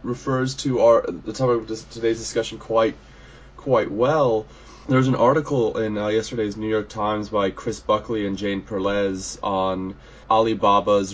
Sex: male